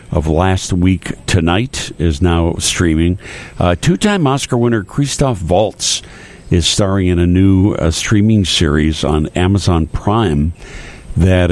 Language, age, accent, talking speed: English, 60-79, American, 130 wpm